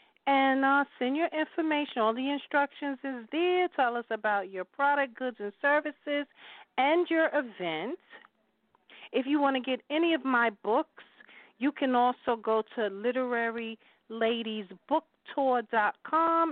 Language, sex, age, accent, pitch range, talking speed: English, female, 40-59, American, 210-285 Hz, 130 wpm